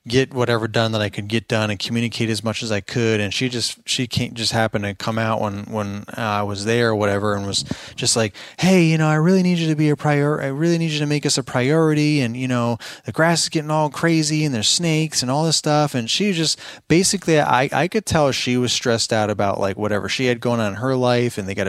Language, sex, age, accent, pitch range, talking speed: English, male, 20-39, American, 110-130 Hz, 270 wpm